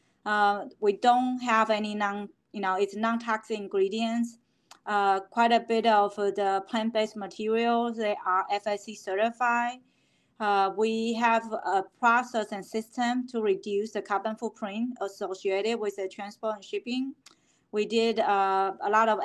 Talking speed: 150 wpm